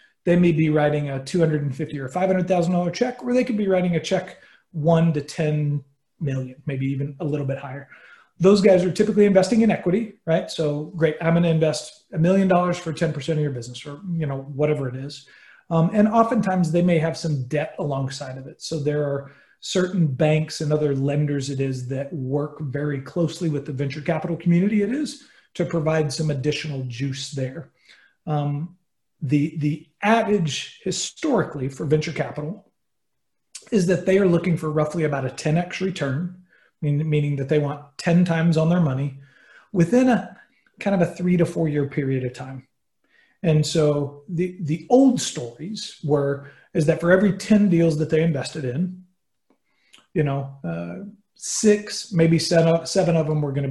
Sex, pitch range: male, 145-180 Hz